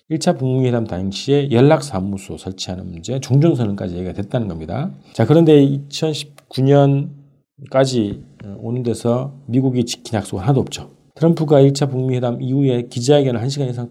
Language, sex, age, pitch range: Korean, male, 40-59, 105-145 Hz